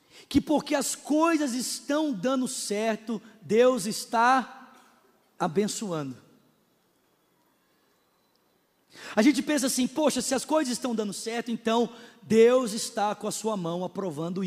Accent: Brazilian